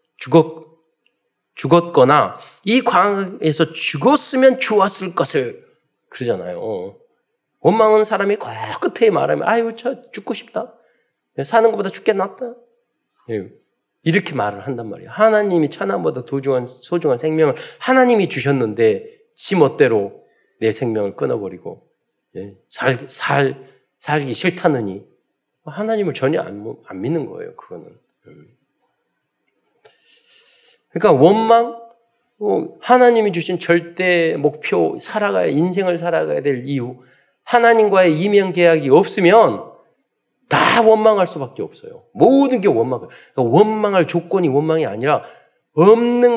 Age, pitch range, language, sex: 40-59, 160-240 Hz, Korean, male